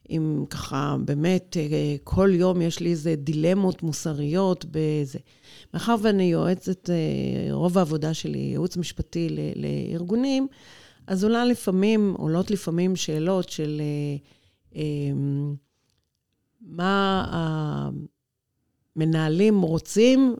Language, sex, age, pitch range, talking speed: Hebrew, female, 40-59, 155-190 Hz, 90 wpm